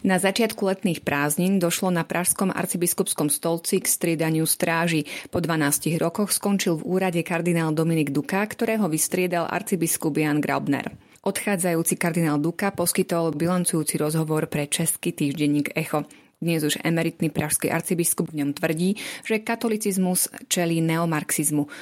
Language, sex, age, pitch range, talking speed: Slovak, female, 30-49, 155-185 Hz, 130 wpm